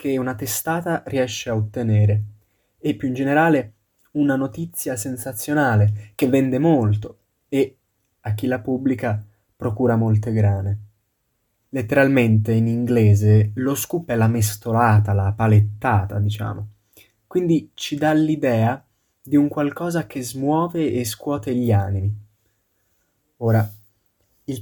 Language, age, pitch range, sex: Italian, 20-39, 105-130 Hz, male